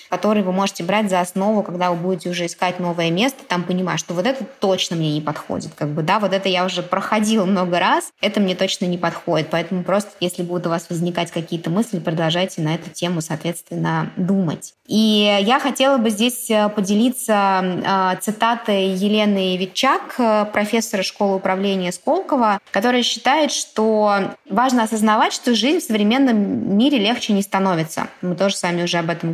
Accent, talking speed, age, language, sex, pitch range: native, 170 wpm, 20-39, Russian, female, 180-220 Hz